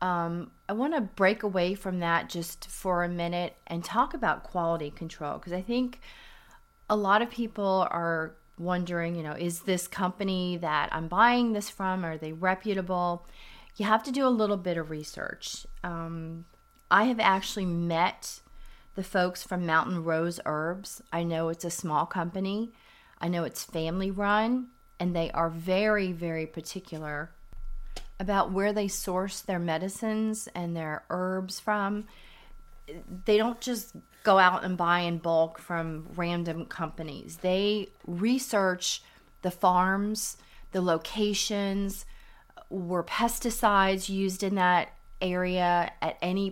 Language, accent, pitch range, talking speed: English, American, 170-200 Hz, 145 wpm